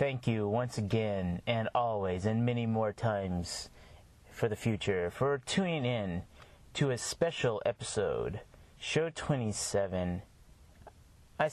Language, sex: English, male